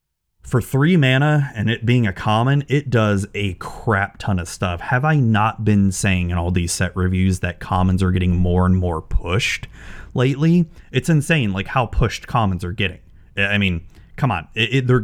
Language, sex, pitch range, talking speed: English, male, 95-125 Hz, 195 wpm